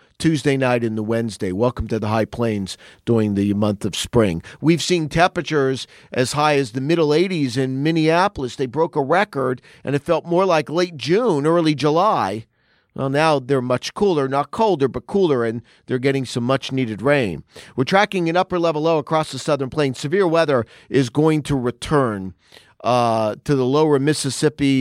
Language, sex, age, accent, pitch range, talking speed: English, male, 40-59, American, 125-150 Hz, 175 wpm